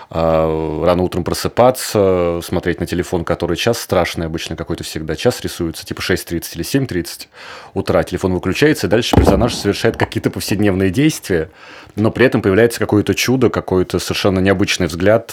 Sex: male